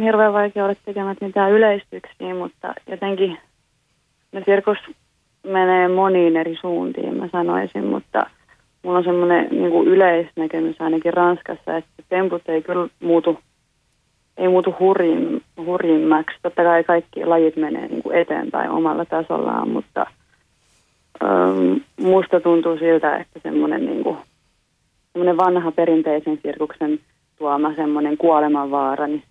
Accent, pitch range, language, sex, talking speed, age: native, 155-180 Hz, Finnish, female, 115 wpm, 30-49